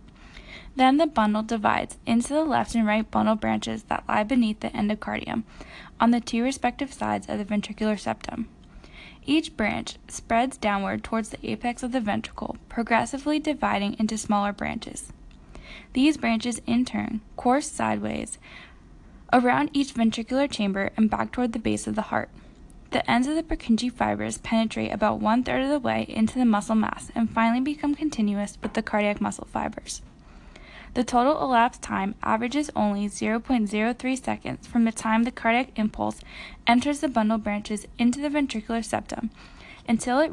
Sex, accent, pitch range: female, American, 210-255 Hz